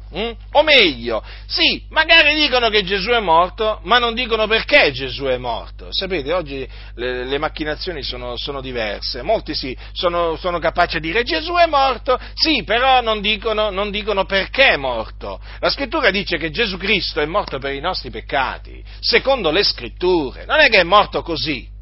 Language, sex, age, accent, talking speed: Italian, male, 50-69, native, 180 wpm